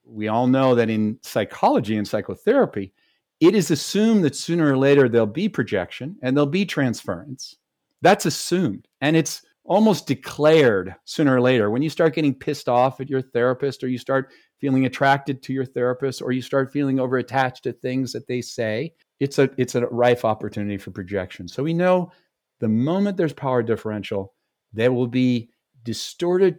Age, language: 50-69, English